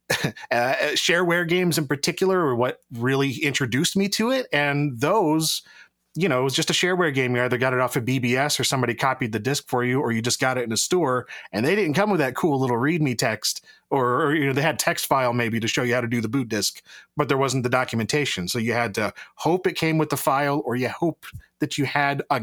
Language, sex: English, male